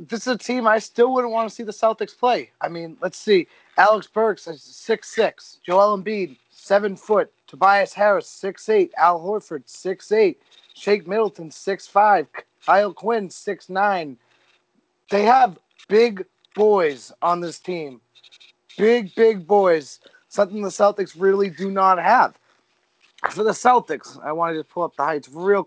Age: 30-49